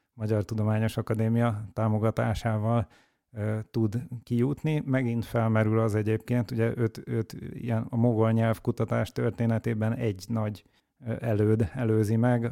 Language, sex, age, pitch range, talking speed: Hungarian, male, 30-49, 110-120 Hz, 110 wpm